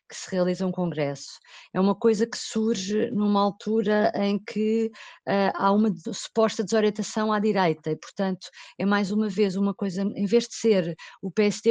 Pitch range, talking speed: 195-230 Hz, 175 wpm